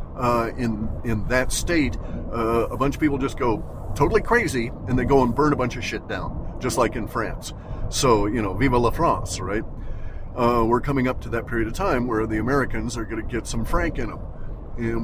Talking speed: 225 wpm